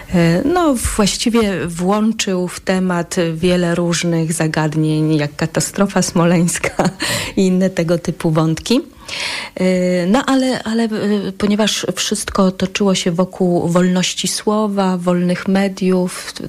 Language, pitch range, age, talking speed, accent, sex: Polish, 170-195 Hz, 40-59, 105 wpm, native, female